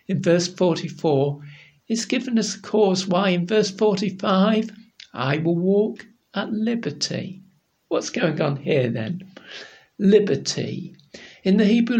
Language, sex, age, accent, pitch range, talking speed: English, male, 60-79, British, 175-230 Hz, 130 wpm